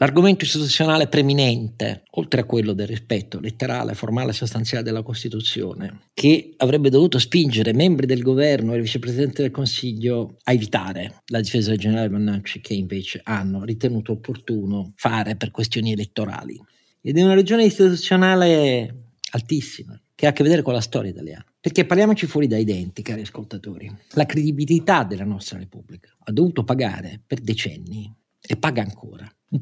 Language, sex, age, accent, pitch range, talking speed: Italian, male, 50-69, native, 110-150 Hz, 155 wpm